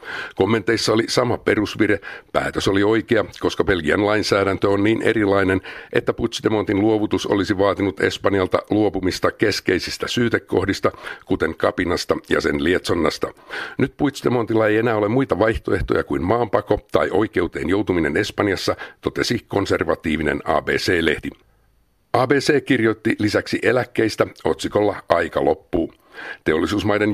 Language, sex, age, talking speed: Finnish, male, 60-79, 115 wpm